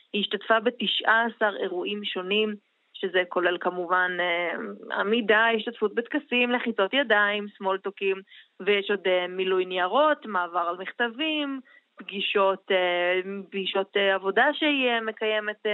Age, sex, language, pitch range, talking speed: 20-39, female, Hebrew, 190-225 Hz, 105 wpm